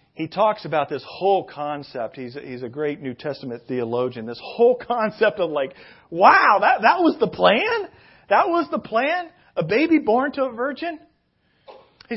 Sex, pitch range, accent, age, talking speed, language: male, 170-240 Hz, American, 40-59, 175 wpm, English